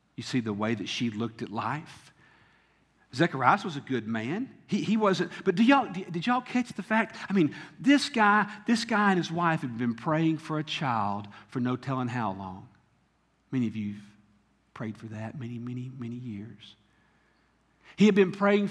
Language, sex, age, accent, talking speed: English, male, 50-69, American, 195 wpm